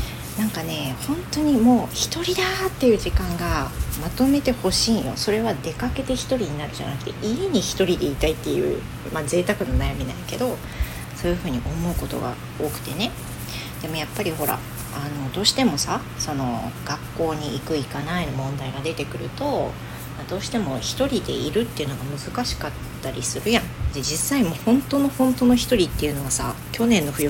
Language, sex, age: Japanese, female, 40-59